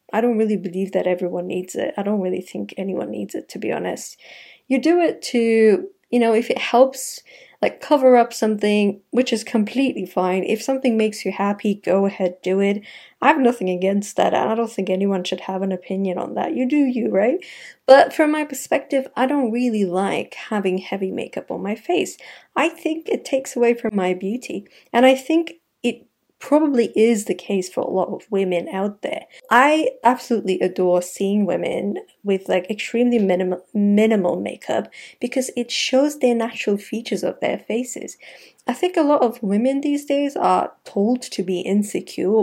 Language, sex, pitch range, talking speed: English, female, 190-255 Hz, 190 wpm